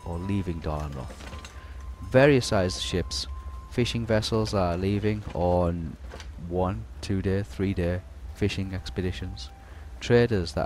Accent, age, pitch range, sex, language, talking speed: British, 30-49, 75-105 Hz, male, English, 115 wpm